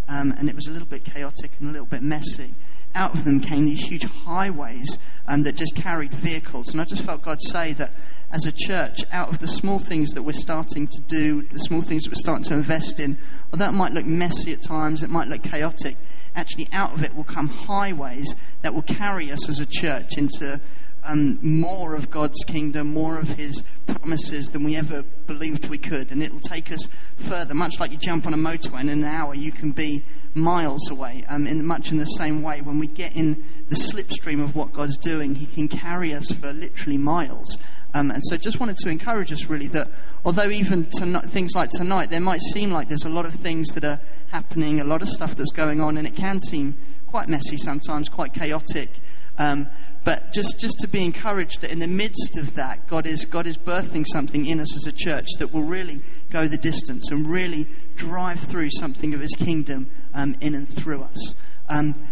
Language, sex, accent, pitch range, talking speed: English, male, British, 150-170 Hz, 220 wpm